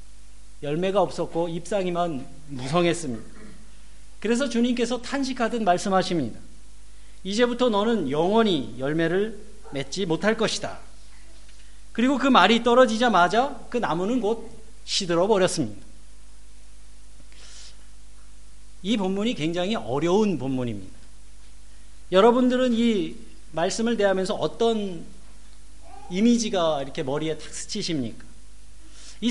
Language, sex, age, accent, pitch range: Korean, male, 40-59, native, 140-235 Hz